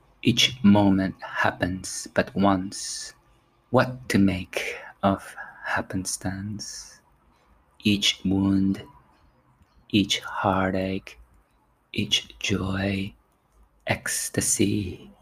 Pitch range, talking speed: 95-100 Hz, 65 wpm